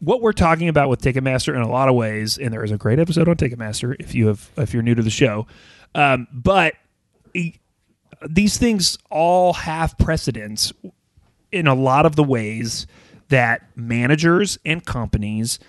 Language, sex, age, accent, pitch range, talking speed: English, male, 30-49, American, 110-160 Hz, 175 wpm